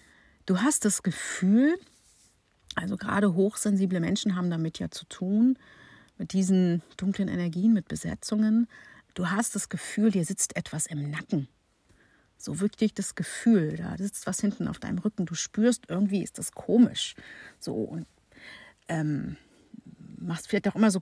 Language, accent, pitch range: German, German, 175-220 Hz